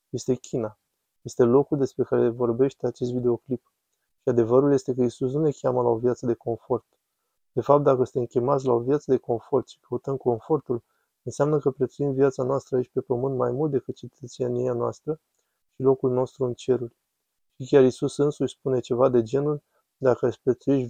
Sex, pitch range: male, 120-140 Hz